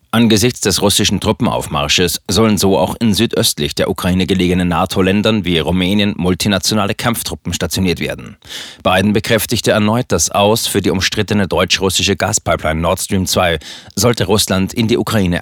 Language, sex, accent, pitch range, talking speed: German, male, German, 90-110 Hz, 145 wpm